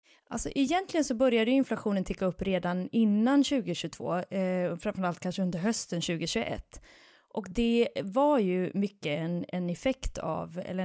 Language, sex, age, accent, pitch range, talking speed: Swedish, female, 20-39, native, 180-225 Hz, 145 wpm